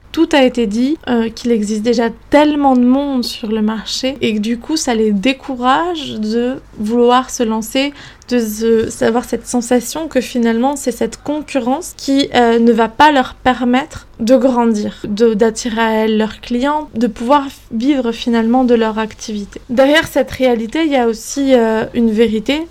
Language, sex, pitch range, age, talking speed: French, female, 230-270 Hz, 20-39, 175 wpm